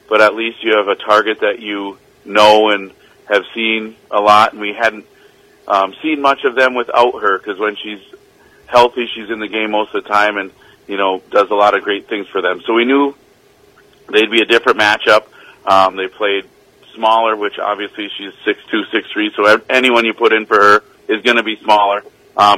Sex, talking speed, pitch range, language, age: male, 205 wpm, 105-120 Hz, English, 40-59